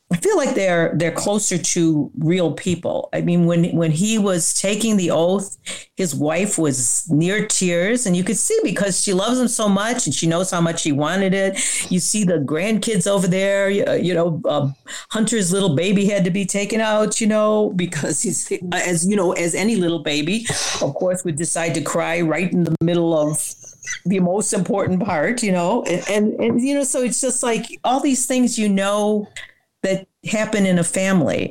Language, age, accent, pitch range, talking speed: English, 50-69, American, 165-210 Hz, 200 wpm